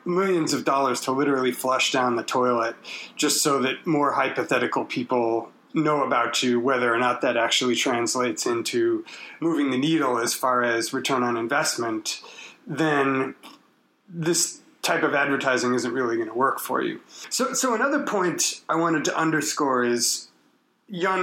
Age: 30-49